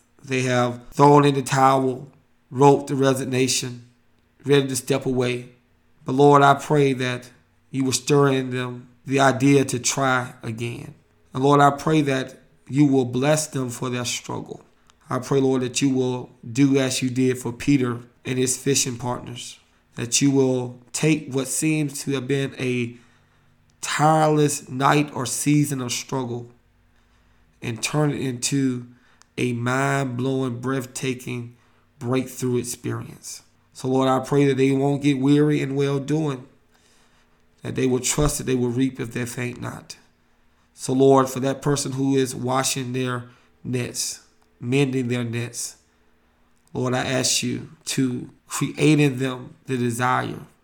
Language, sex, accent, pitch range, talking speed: English, male, American, 120-135 Hz, 150 wpm